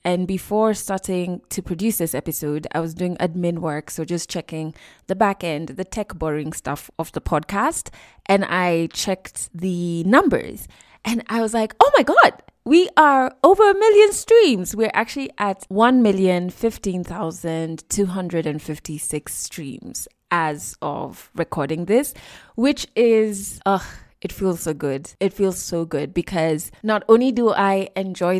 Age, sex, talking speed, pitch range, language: 20-39, female, 165 wpm, 165-215 Hz, English